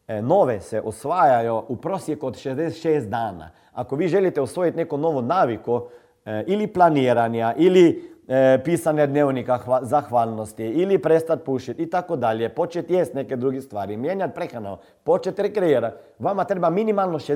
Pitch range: 125-175 Hz